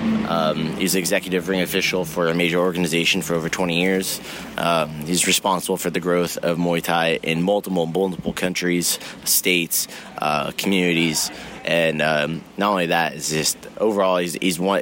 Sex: male